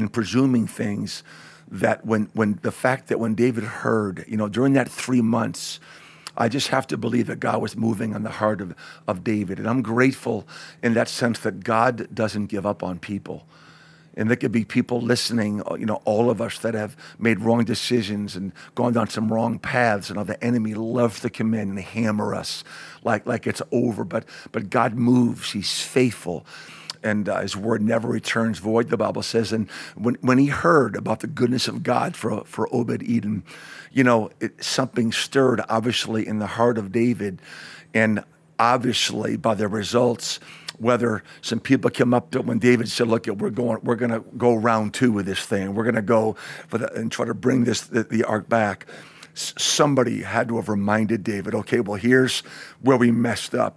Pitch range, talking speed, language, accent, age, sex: 105-120 Hz, 200 wpm, English, American, 50-69, male